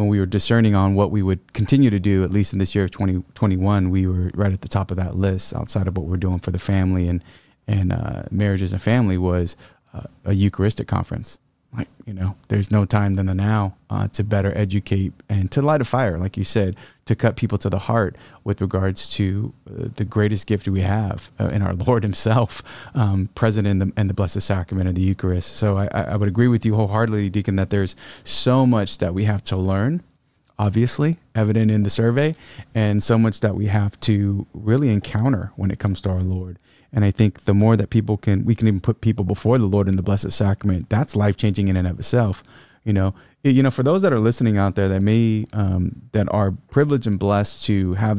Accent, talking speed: American, 230 wpm